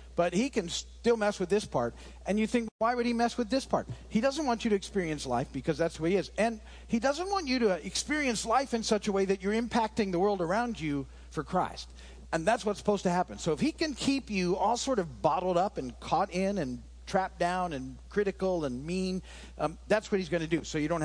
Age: 50-69